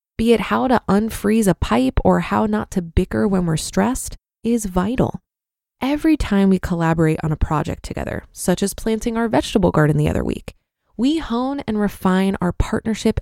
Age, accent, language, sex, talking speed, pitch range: 20-39, American, English, female, 180 wpm, 185-245 Hz